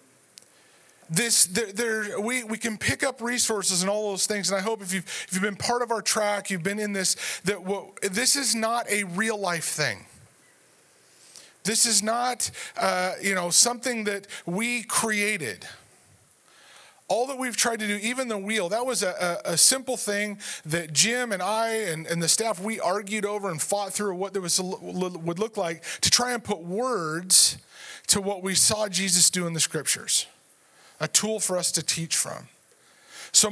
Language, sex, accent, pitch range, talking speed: English, male, American, 190-235 Hz, 190 wpm